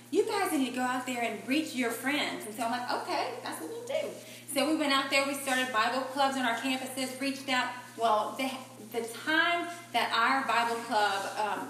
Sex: female